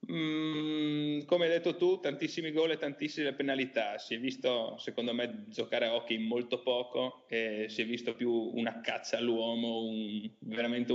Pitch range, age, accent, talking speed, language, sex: 115-130 Hz, 30-49, native, 165 wpm, Italian, male